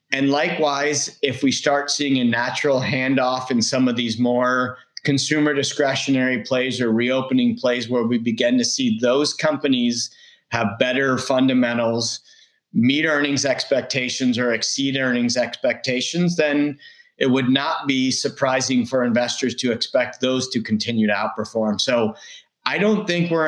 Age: 30-49